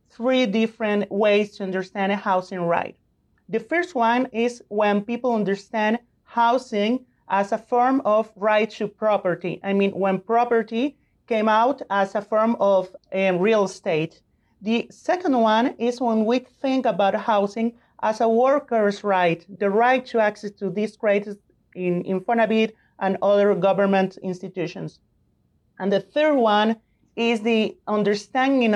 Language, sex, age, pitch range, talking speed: English, male, 30-49, 195-230 Hz, 145 wpm